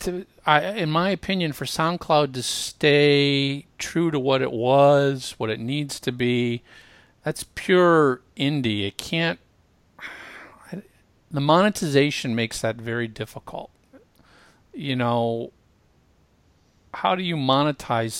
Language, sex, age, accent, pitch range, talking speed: English, male, 50-69, American, 110-140 Hz, 110 wpm